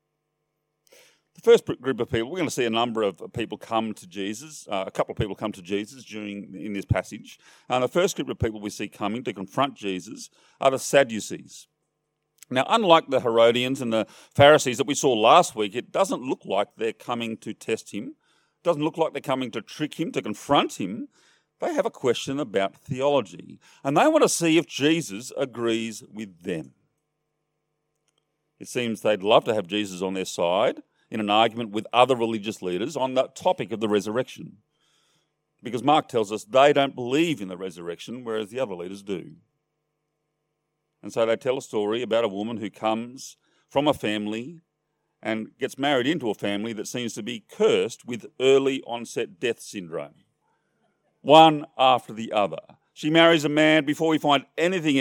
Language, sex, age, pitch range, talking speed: English, male, 40-59, 110-150 Hz, 190 wpm